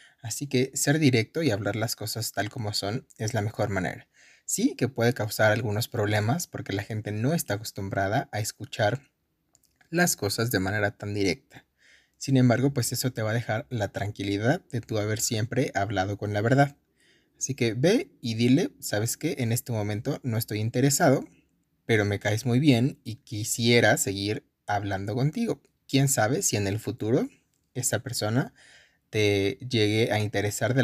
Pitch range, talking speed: 105-135 Hz, 175 wpm